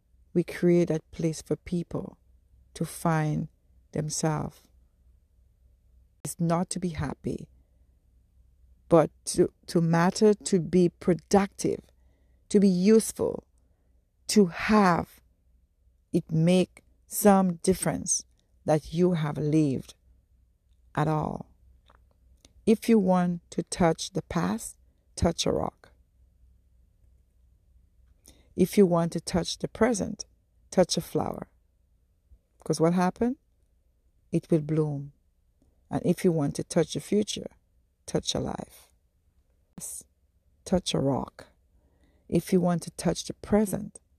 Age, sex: 60-79, female